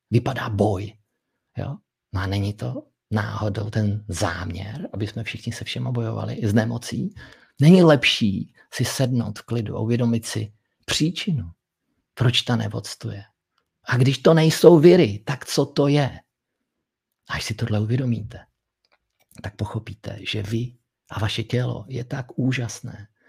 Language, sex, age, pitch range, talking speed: Czech, male, 50-69, 105-120 Hz, 140 wpm